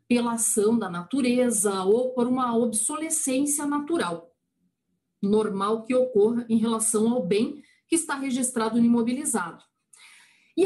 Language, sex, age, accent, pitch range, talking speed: Portuguese, female, 40-59, Brazilian, 215-290 Hz, 125 wpm